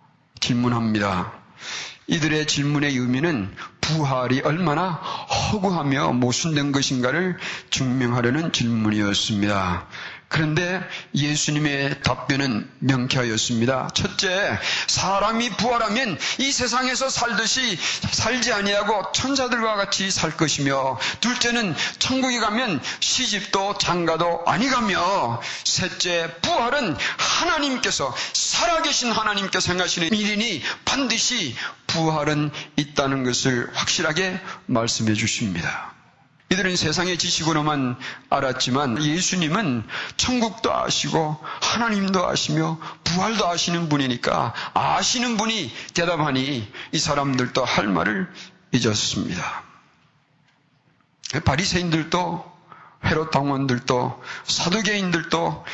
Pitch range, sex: 135-200 Hz, male